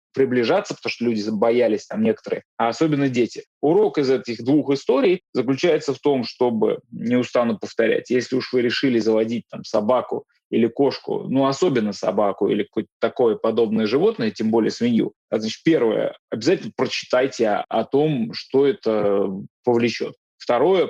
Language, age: Russian, 20-39